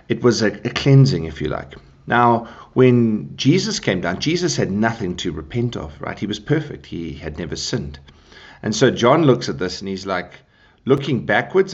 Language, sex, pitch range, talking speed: English, male, 90-130 Hz, 195 wpm